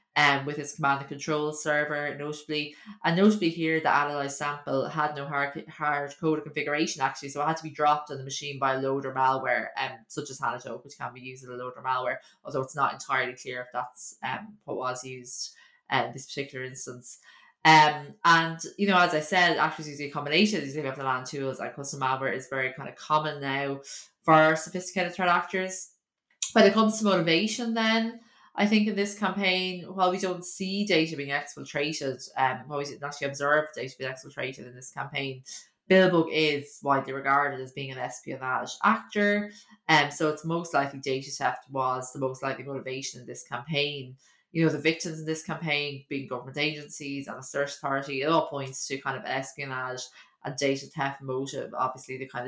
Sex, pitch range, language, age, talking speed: female, 135-160 Hz, English, 20-39, 200 wpm